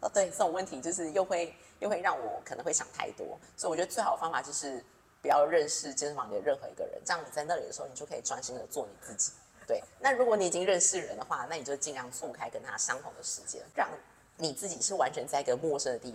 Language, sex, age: Chinese, female, 30-49